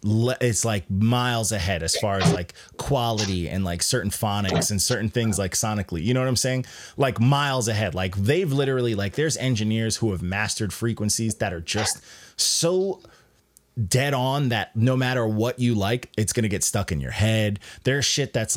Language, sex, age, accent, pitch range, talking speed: English, male, 30-49, American, 100-130 Hz, 185 wpm